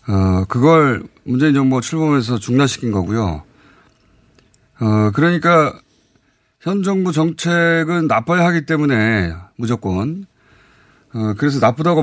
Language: Korean